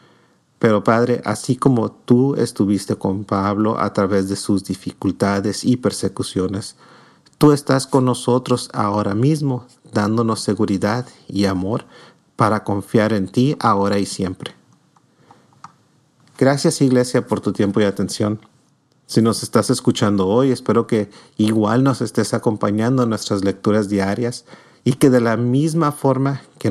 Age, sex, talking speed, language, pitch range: 40-59, male, 135 wpm, Spanish, 105-130 Hz